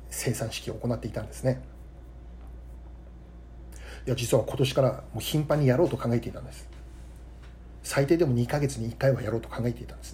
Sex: male